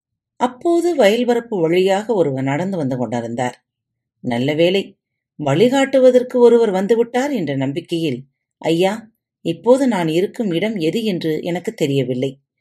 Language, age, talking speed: Tamil, 40-59, 105 wpm